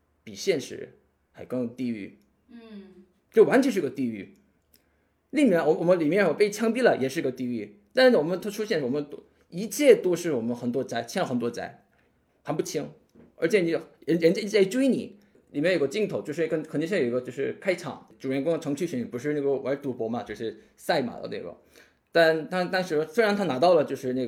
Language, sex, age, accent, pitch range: Chinese, male, 20-39, native, 130-200 Hz